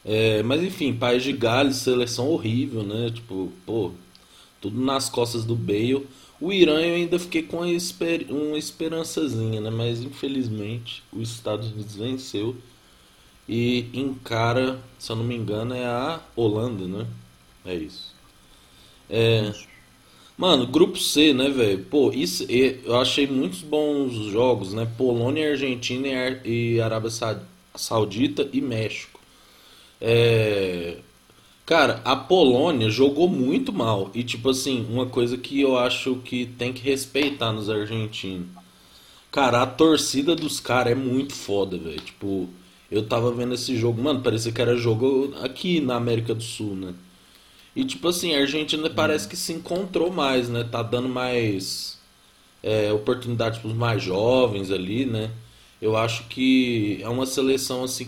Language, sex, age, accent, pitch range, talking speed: Portuguese, male, 20-39, Brazilian, 110-135 Hz, 145 wpm